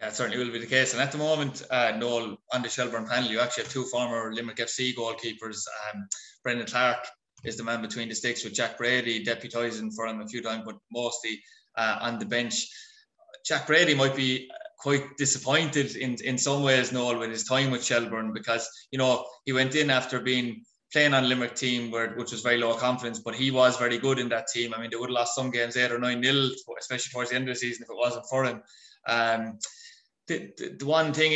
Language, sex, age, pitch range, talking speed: English, male, 20-39, 120-135 Hz, 230 wpm